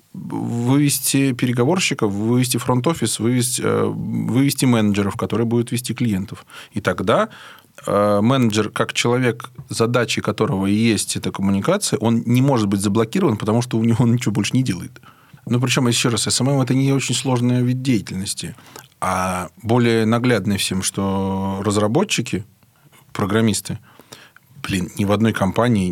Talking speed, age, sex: 140 wpm, 20-39, male